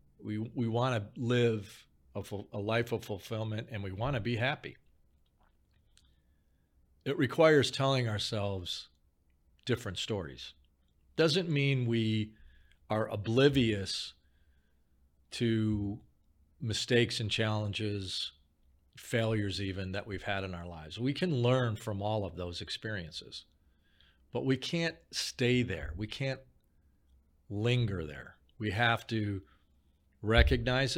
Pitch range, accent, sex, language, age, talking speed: 75-120 Hz, American, male, English, 40-59, 115 wpm